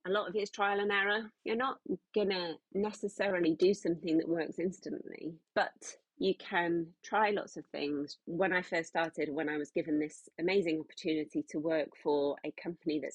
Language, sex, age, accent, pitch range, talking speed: English, female, 30-49, British, 150-185 Hz, 190 wpm